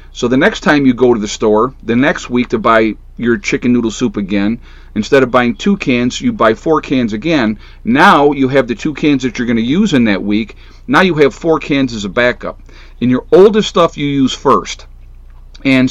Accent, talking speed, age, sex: American, 225 wpm, 40-59, male